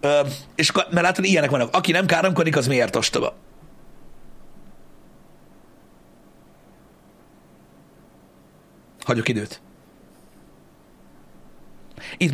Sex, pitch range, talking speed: male, 125-180 Hz, 70 wpm